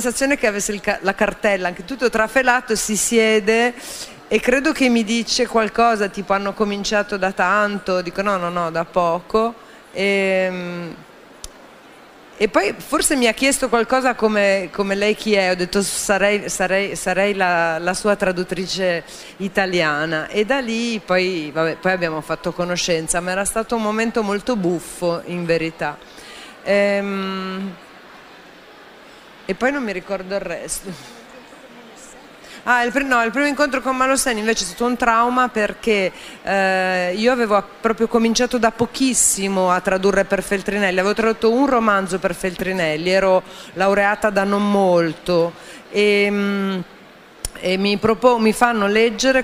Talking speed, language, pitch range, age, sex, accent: 150 wpm, Italian, 185-225 Hz, 30-49, female, native